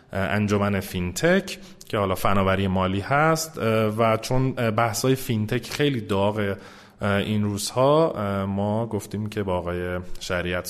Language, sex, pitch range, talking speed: Persian, male, 95-115 Hz, 110 wpm